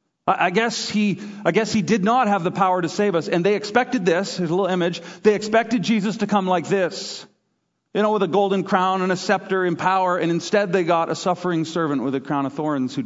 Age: 40-59